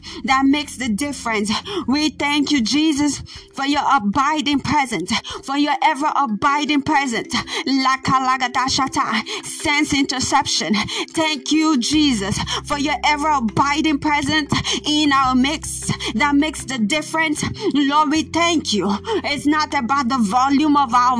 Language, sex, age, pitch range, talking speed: English, female, 30-49, 270-305 Hz, 125 wpm